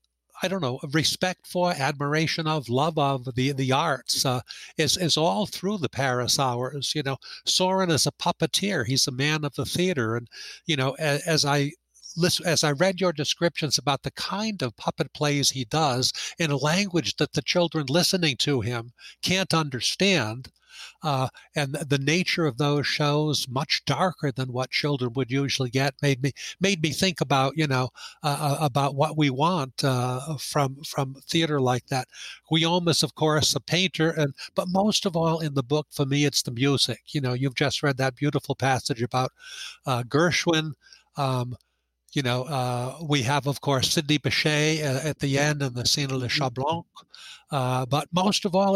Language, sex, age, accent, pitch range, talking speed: English, male, 60-79, American, 135-160 Hz, 185 wpm